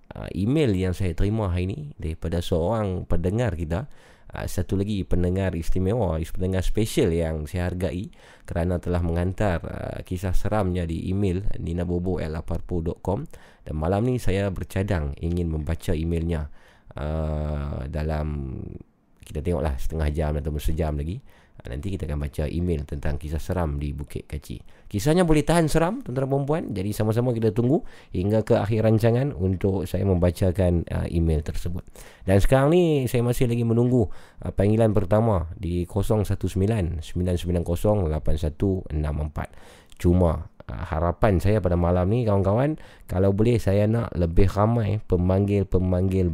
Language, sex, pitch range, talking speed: Malay, male, 85-105 Hz, 130 wpm